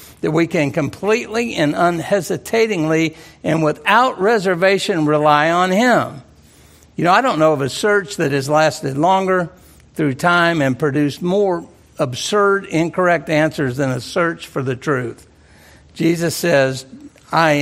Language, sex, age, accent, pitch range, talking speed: English, male, 60-79, American, 140-185 Hz, 140 wpm